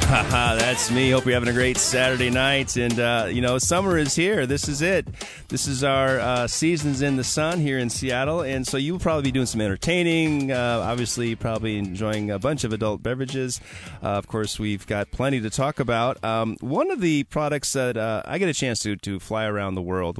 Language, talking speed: English, 215 wpm